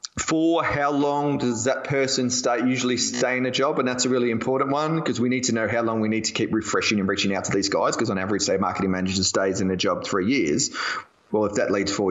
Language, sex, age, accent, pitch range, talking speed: English, male, 20-39, Australian, 95-135 Hz, 265 wpm